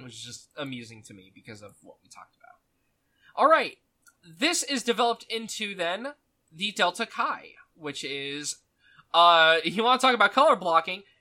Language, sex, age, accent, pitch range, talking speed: English, male, 20-39, American, 150-230 Hz, 170 wpm